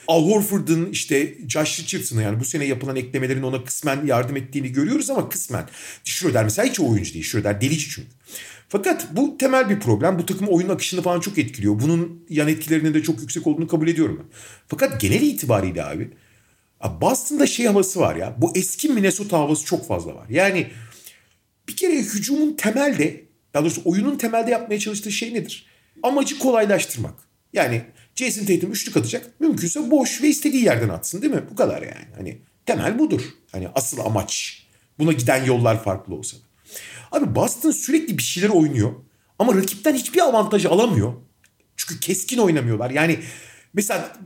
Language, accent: Turkish, native